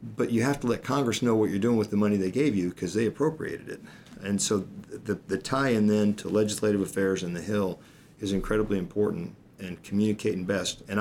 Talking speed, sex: 220 wpm, male